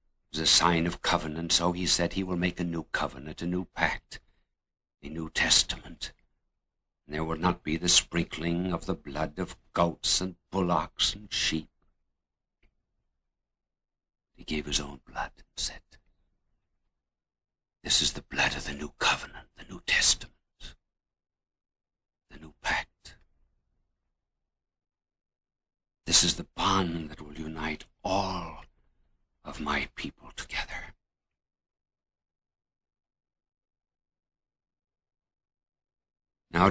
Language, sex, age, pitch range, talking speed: English, male, 60-79, 75-95 Hz, 115 wpm